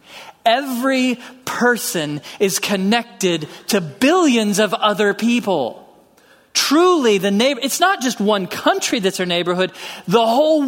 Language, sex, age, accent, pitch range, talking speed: English, male, 40-59, American, 170-250 Hz, 125 wpm